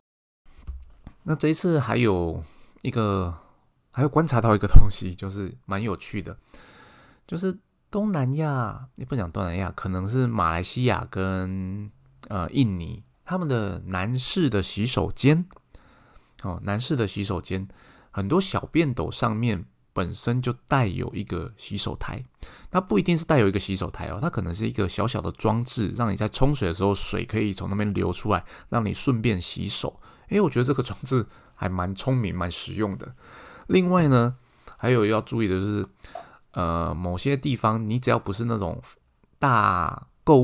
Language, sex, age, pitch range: Chinese, male, 20-39, 95-130 Hz